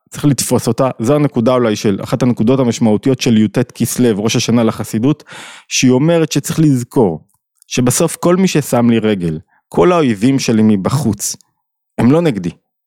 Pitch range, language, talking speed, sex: 115-155 Hz, Hebrew, 155 wpm, male